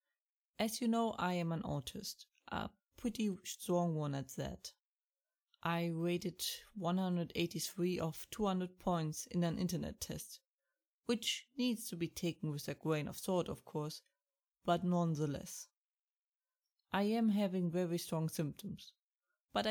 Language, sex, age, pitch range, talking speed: English, female, 30-49, 170-215 Hz, 135 wpm